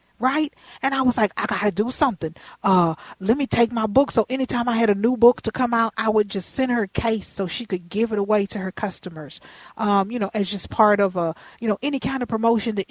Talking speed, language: 260 wpm, English